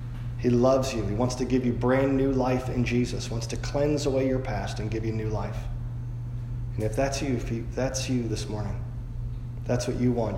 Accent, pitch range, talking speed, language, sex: American, 115-120 Hz, 230 wpm, English, male